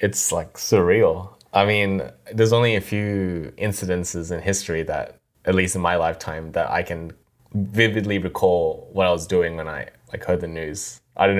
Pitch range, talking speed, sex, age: 85-100 Hz, 185 wpm, male, 10-29